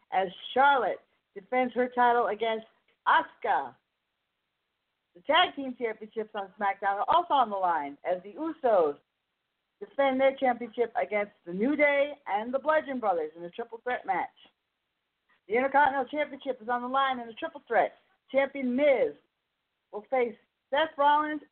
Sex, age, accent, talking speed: female, 40-59, American, 150 wpm